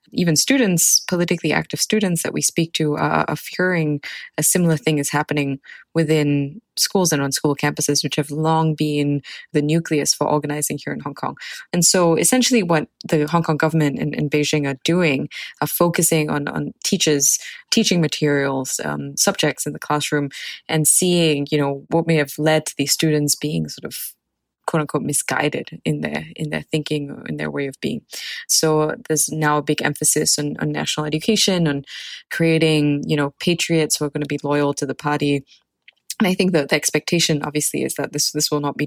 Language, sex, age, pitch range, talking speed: English, female, 20-39, 145-160 Hz, 190 wpm